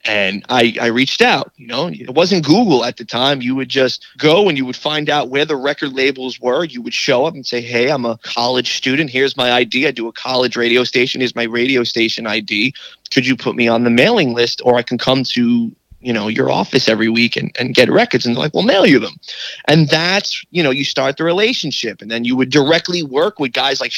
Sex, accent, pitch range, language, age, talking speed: male, American, 120-160 Hz, English, 30-49, 250 wpm